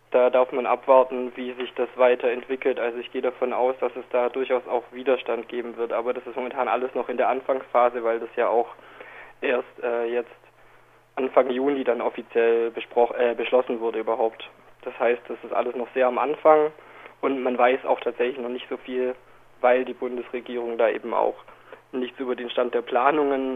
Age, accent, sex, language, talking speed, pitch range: 20-39, German, male, German, 190 wpm, 120-130 Hz